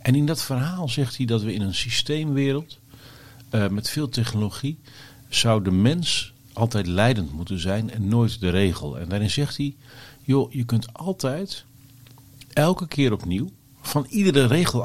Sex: male